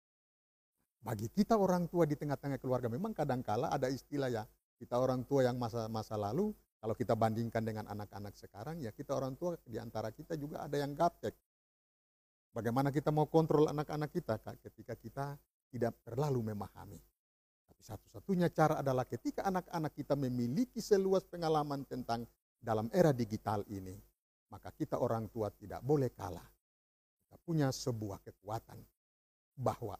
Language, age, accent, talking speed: Indonesian, 50-69, native, 145 wpm